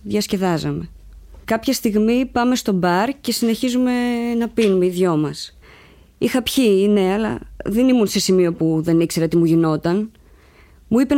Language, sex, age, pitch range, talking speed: Greek, female, 20-39, 180-250 Hz, 155 wpm